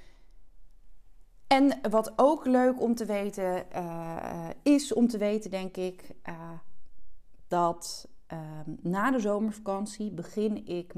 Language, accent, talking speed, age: Dutch, Dutch, 120 wpm, 30-49